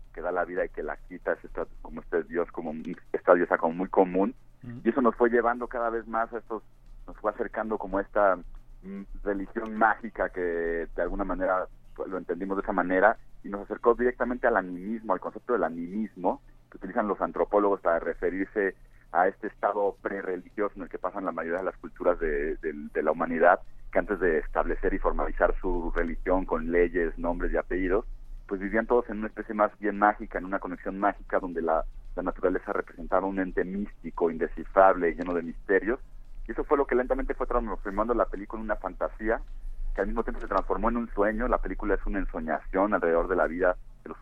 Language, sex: Spanish, male